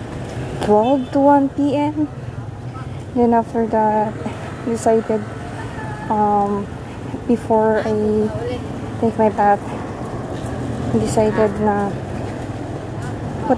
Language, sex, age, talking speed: Filipino, female, 20-39, 75 wpm